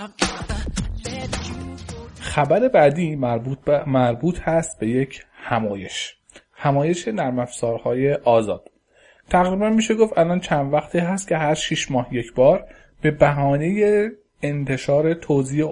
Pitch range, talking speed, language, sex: 125-165 Hz, 110 wpm, Persian, male